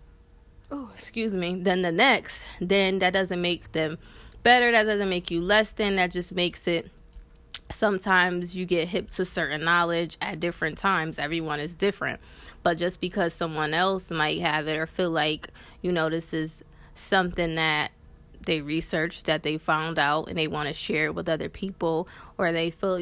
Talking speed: 180 wpm